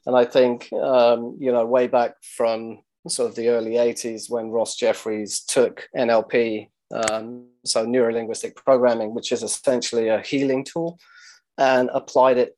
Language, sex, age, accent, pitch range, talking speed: English, male, 30-49, British, 120-135 Hz, 155 wpm